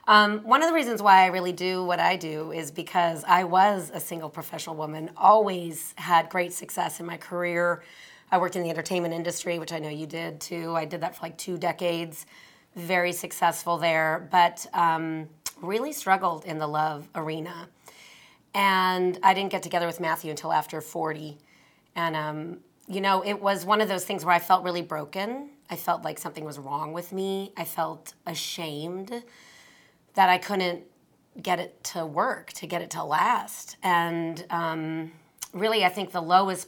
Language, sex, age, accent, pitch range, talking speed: English, female, 30-49, American, 160-190 Hz, 185 wpm